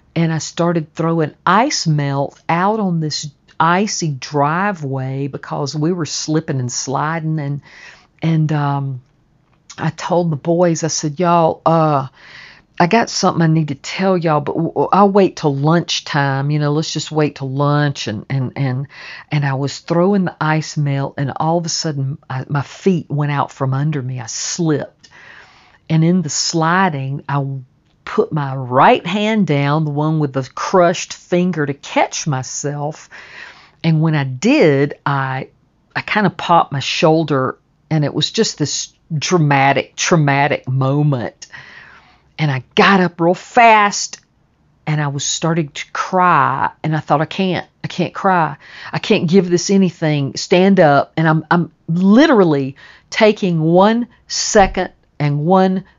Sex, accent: female, American